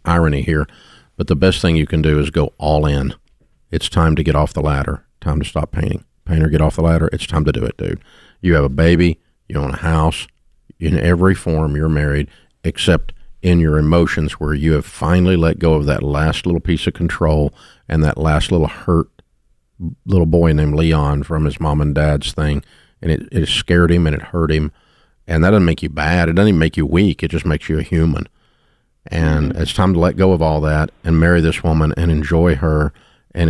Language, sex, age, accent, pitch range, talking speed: English, male, 50-69, American, 75-85 Hz, 220 wpm